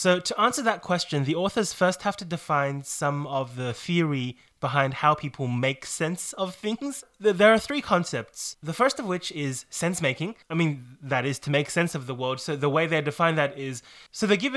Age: 20-39